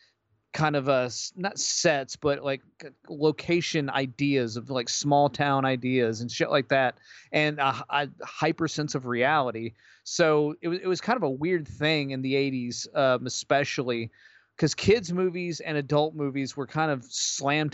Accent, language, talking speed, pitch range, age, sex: American, English, 170 wpm, 130-155 Hz, 30-49, male